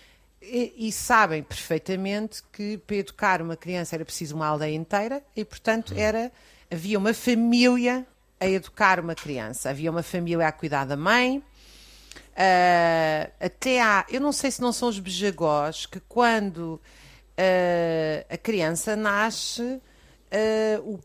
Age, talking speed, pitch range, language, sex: 40-59, 125 wpm, 155-205 Hz, Portuguese, female